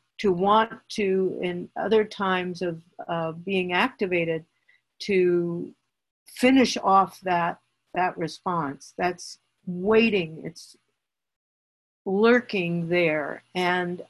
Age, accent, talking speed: 50-69, American, 95 wpm